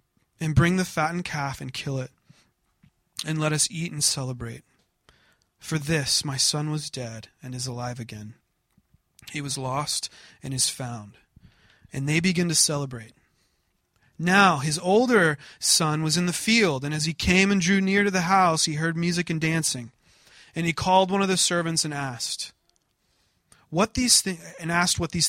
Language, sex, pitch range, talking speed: English, male, 135-180 Hz, 175 wpm